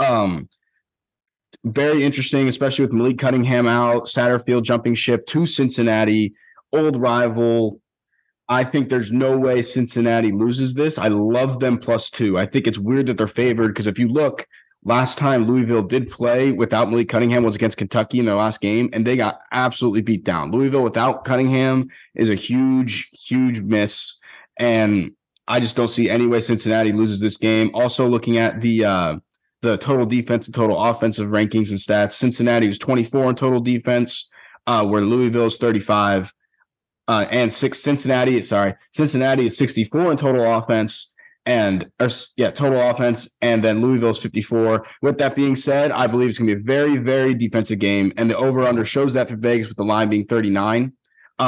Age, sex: 30-49, male